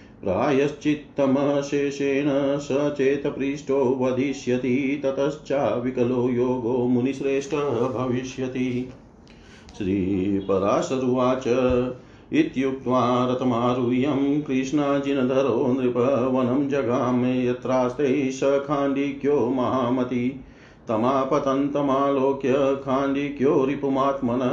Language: Hindi